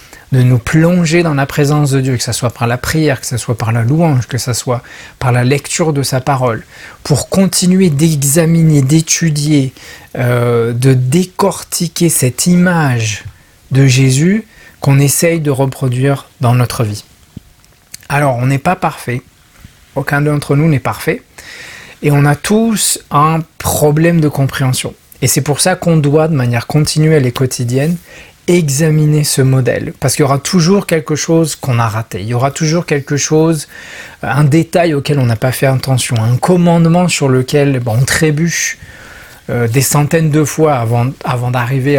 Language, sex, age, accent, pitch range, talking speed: French, male, 40-59, French, 125-160 Hz, 165 wpm